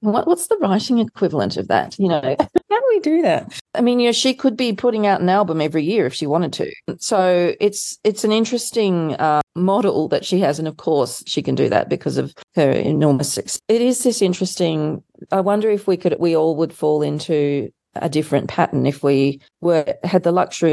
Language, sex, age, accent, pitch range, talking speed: English, female, 40-59, Australian, 150-190 Hz, 220 wpm